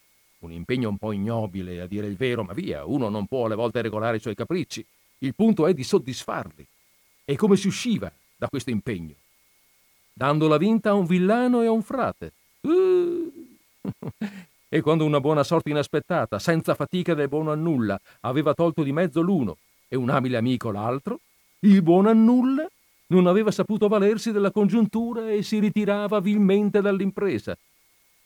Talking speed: 170 wpm